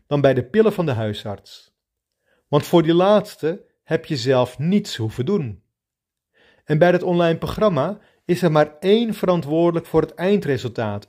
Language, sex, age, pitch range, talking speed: Dutch, male, 40-59, 125-190 Hz, 160 wpm